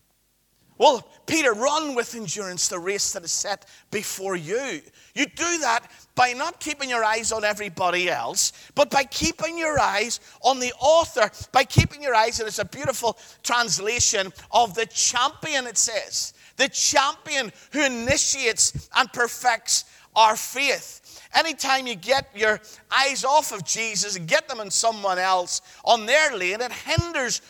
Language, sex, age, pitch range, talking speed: English, male, 50-69, 210-285 Hz, 155 wpm